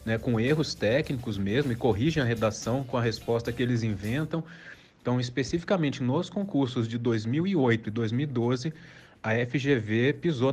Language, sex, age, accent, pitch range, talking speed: Portuguese, male, 30-49, Brazilian, 115-145 Hz, 150 wpm